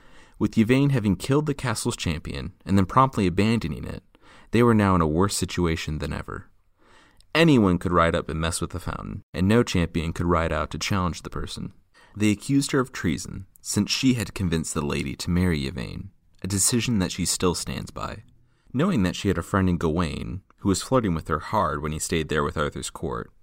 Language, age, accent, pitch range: English, 30-49, American, 80-100 Hz